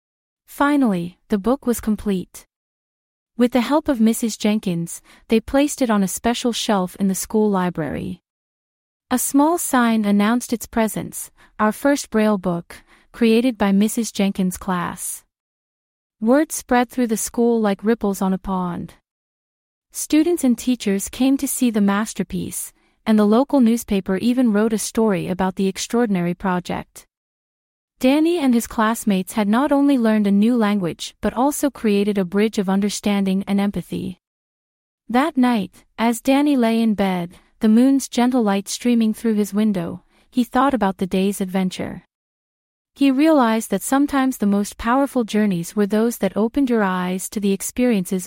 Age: 30-49